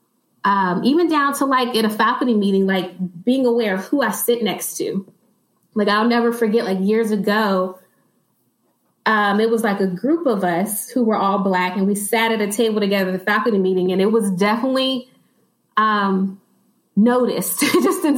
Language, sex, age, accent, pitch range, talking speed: English, female, 20-39, American, 190-235 Hz, 185 wpm